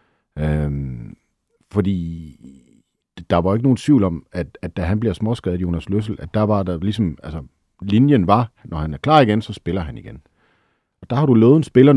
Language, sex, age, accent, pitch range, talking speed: Danish, male, 50-69, native, 85-110 Hz, 205 wpm